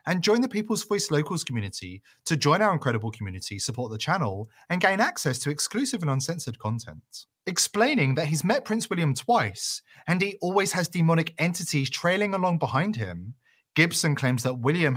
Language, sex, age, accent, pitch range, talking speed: English, male, 30-49, British, 115-165 Hz, 175 wpm